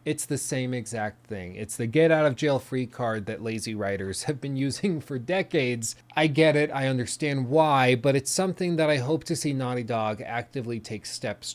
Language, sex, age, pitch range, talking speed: English, male, 30-49, 115-155 Hz, 210 wpm